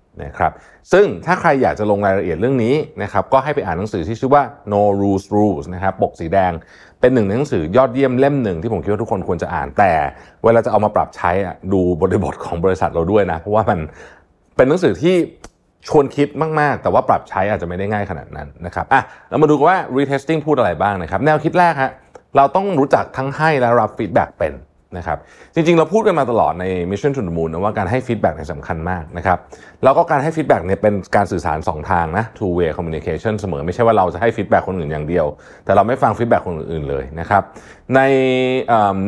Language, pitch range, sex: Thai, 90-135 Hz, male